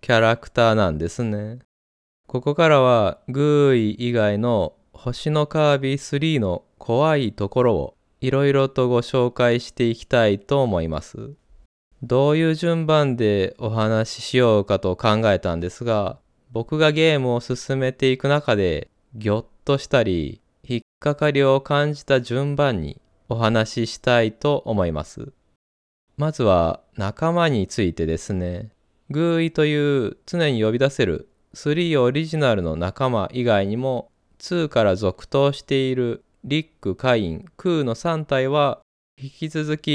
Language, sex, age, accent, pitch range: Japanese, male, 20-39, native, 110-145 Hz